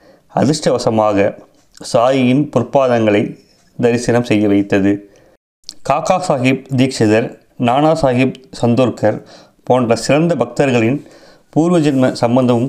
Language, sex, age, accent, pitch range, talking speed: Tamil, male, 30-49, native, 110-135 Hz, 80 wpm